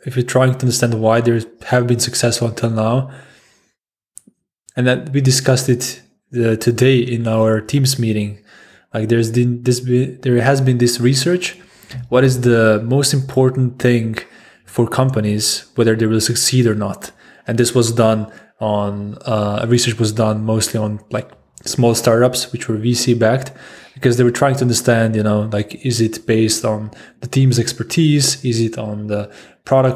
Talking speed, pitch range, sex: 165 wpm, 110-130 Hz, male